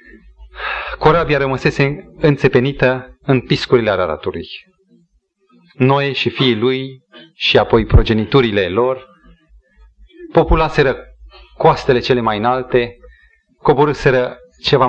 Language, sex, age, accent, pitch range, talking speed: Romanian, male, 30-49, native, 115-190 Hz, 85 wpm